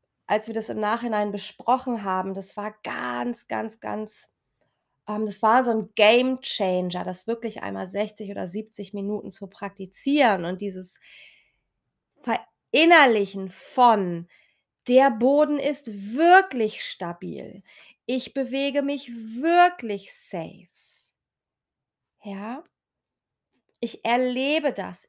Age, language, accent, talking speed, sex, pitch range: 30-49, German, German, 110 wpm, female, 195-235 Hz